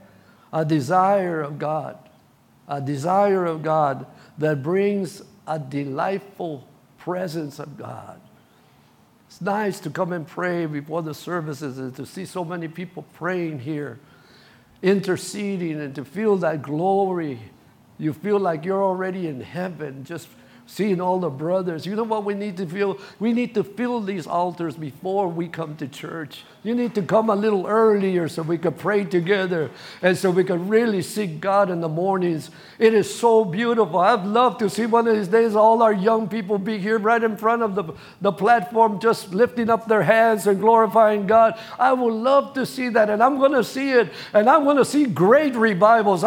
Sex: male